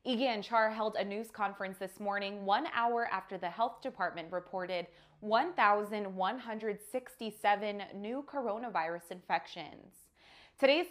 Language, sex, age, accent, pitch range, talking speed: English, female, 20-39, American, 195-250 Hz, 115 wpm